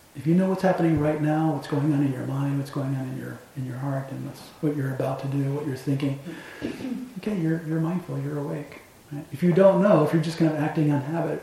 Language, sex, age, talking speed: English, male, 40-59, 265 wpm